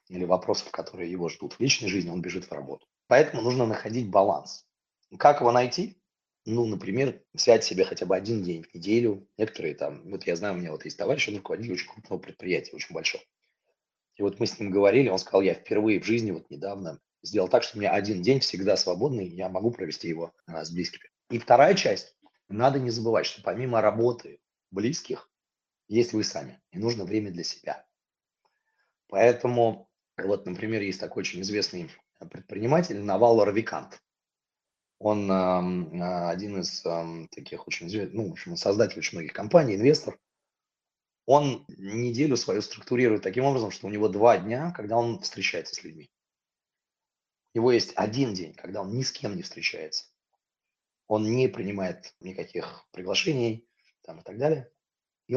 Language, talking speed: Russian, 165 wpm